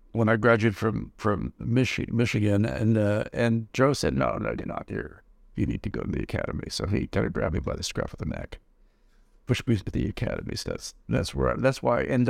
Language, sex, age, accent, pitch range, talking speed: English, male, 70-89, American, 100-130 Hz, 245 wpm